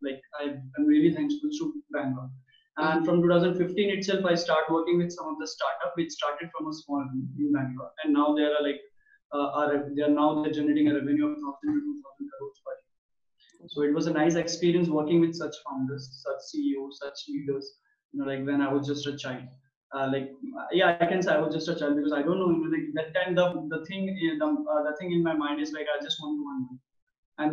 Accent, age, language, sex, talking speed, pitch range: Indian, 20-39, English, male, 235 wpm, 145-170 Hz